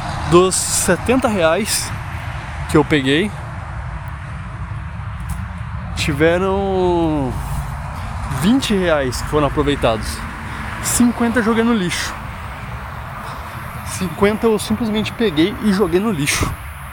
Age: 20-39